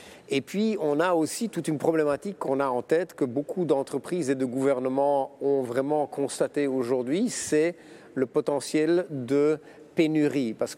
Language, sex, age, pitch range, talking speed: English, male, 50-69, 135-160 Hz, 155 wpm